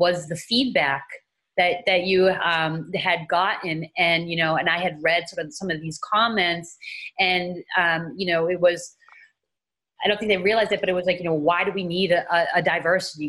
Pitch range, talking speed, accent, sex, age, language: 165-195 Hz, 210 wpm, American, female, 30-49, English